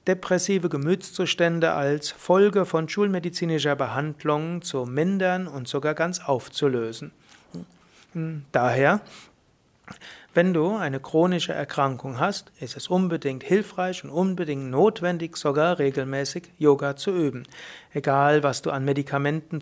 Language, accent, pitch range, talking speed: German, German, 140-180 Hz, 115 wpm